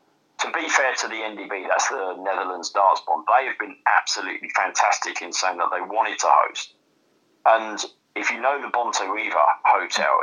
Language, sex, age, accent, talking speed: English, male, 30-49, British, 180 wpm